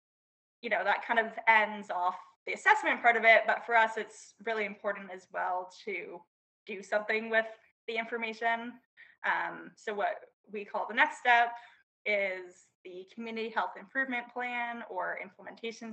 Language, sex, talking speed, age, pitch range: English, female, 160 wpm, 10-29, 200-235 Hz